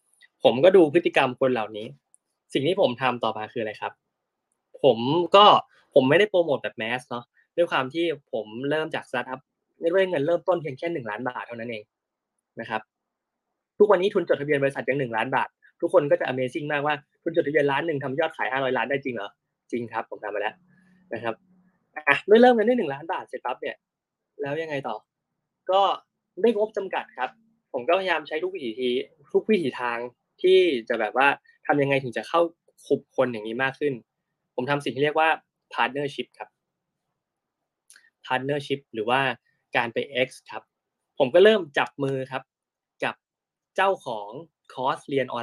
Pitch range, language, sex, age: 125-175 Hz, Thai, male, 20-39